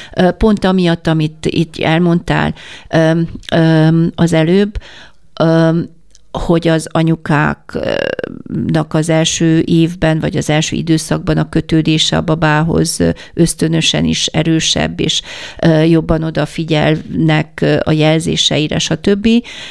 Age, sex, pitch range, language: 50-69, female, 160-185 Hz, Hungarian